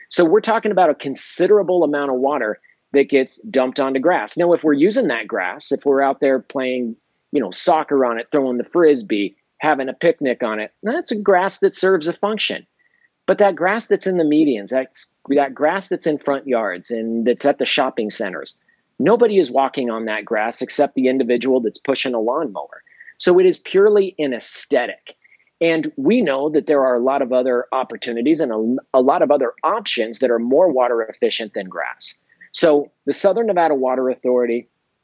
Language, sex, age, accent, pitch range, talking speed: English, male, 40-59, American, 130-195 Hz, 195 wpm